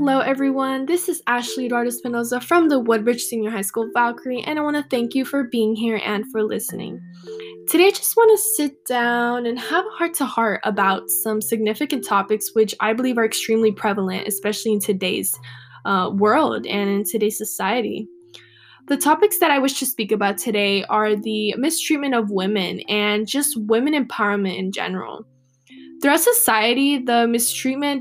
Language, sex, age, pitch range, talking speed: English, female, 10-29, 210-260 Hz, 175 wpm